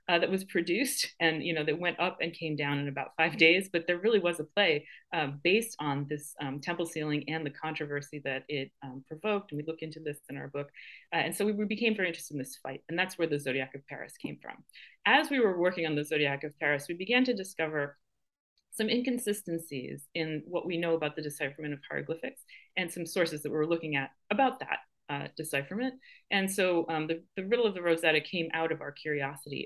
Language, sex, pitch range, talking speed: English, female, 145-175 Hz, 230 wpm